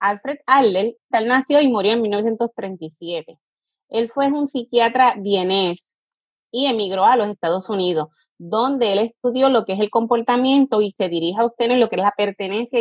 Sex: female